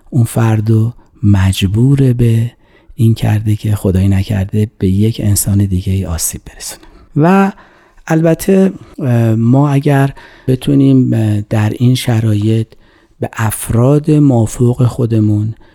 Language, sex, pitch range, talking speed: Persian, male, 105-125 Hz, 105 wpm